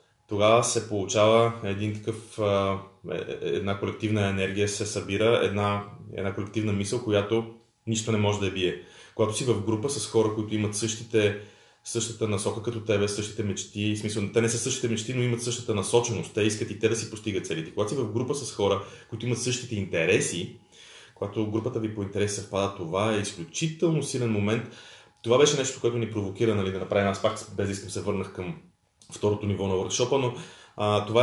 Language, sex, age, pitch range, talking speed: Bulgarian, male, 30-49, 105-120 Hz, 190 wpm